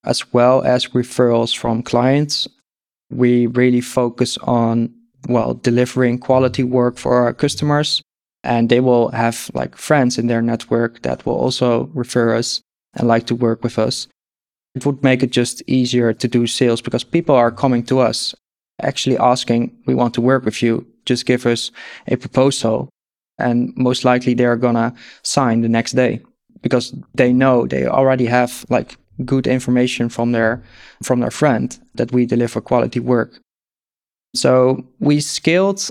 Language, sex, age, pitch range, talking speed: English, male, 20-39, 115-130 Hz, 160 wpm